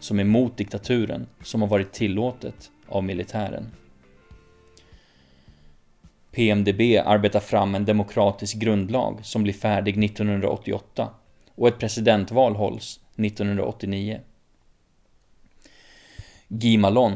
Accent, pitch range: native, 100-110 Hz